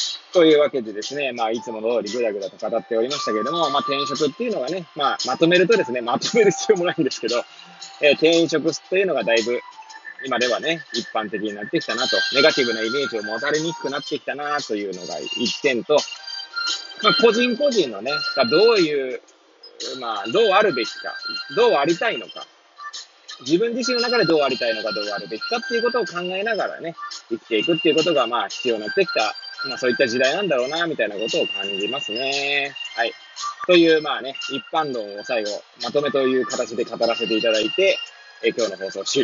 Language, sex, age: Japanese, male, 20-39